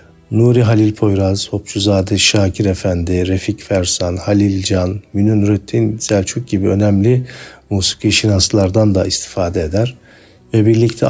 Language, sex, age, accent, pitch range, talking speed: Turkish, male, 50-69, native, 95-110 Hz, 115 wpm